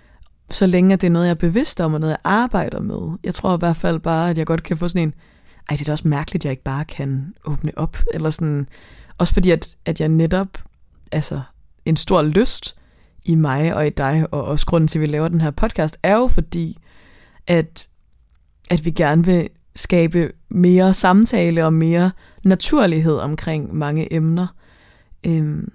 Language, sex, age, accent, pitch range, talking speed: Danish, female, 20-39, native, 150-180 Hz, 195 wpm